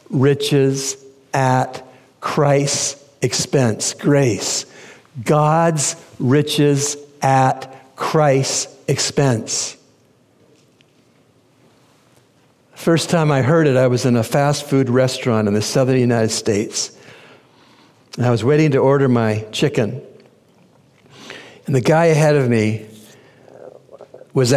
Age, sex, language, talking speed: 60-79, male, English, 105 wpm